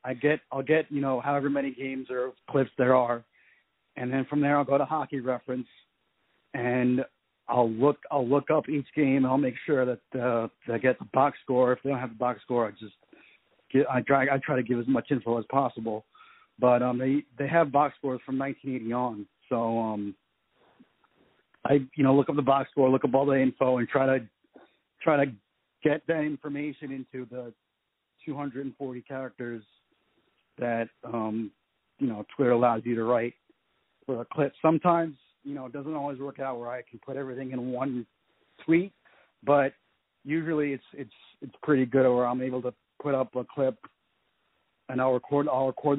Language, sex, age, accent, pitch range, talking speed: English, male, 40-59, American, 120-140 Hz, 195 wpm